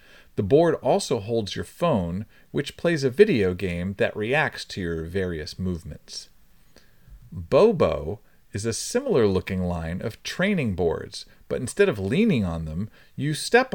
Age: 40-59